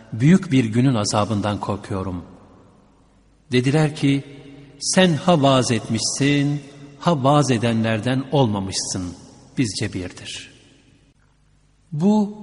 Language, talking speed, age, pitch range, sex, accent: Turkish, 85 wpm, 60-79, 110-140 Hz, male, native